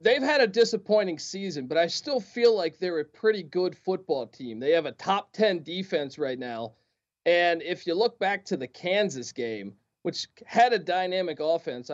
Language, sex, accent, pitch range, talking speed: English, male, American, 165-240 Hz, 190 wpm